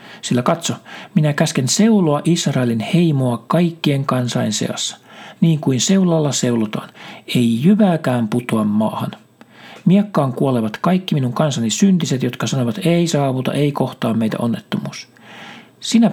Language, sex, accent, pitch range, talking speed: Finnish, male, native, 120-170 Hz, 125 wpm